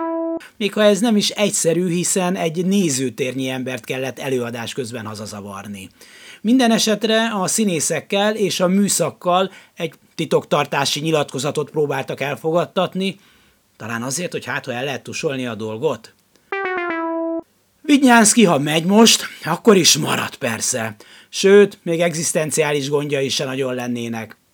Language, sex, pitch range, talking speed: Hungarian, male, 130-195 Hz, 120 wpm